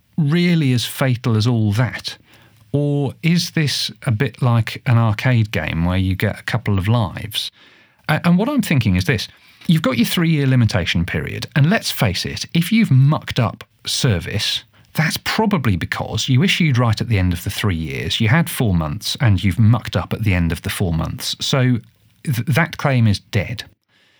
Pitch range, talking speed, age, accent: 100-140 Hz, 190 wpm, 40-59, British